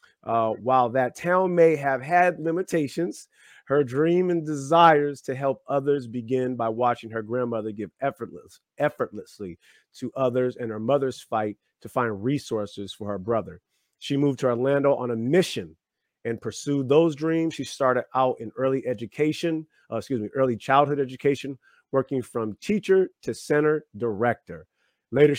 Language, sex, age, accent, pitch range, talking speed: English, male, 30-49, American, 115-145 Hz, 150 wpm